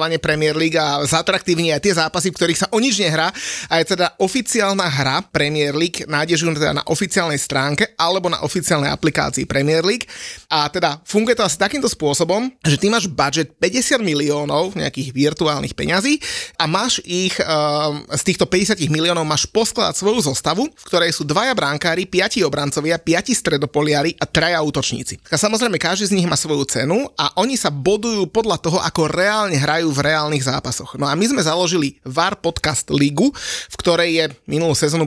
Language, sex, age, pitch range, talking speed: Slovak, male, 30-49, 150-185 Hz, 175 wpm